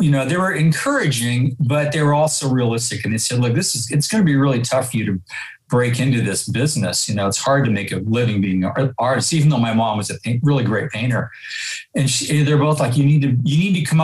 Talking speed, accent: 255 wpm, American